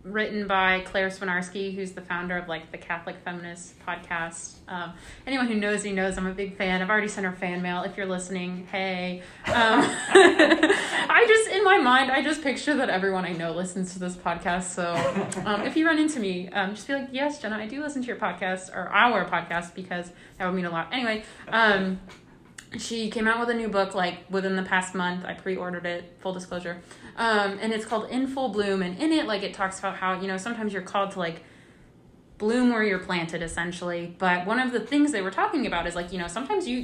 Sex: female